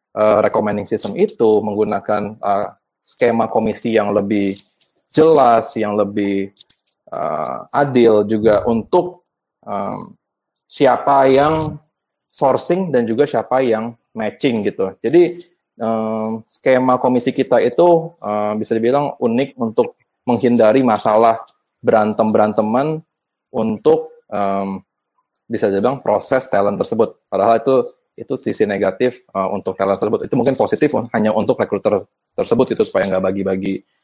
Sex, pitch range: male, 105-140 Hz